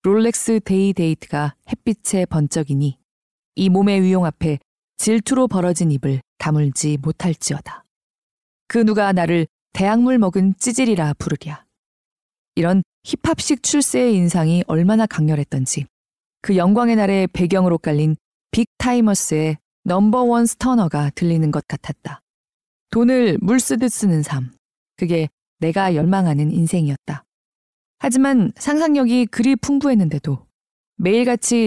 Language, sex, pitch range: Korean, female, 160-230 Hz